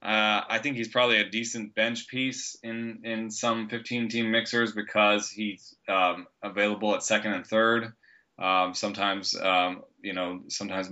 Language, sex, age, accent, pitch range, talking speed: English, male, 20-39, American, 100-115 Hz, 160 wpm